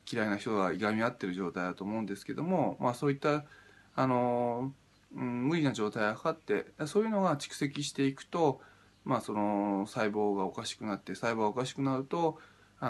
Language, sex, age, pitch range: Japanese, male, 20-39, 100-140 Hz